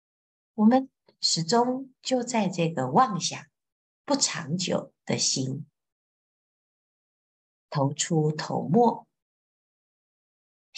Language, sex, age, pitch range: Chinese, female, 50-69, 150-220 Hz